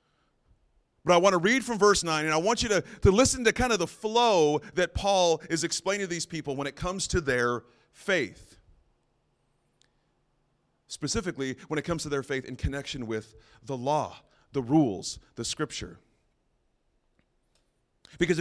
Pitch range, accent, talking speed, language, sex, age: 140-190 Hz, American, 165 wpm, English, male, 30-49